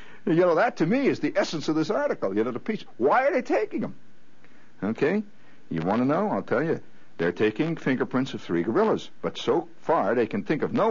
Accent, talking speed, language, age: American, 230 wpm, English, 60-79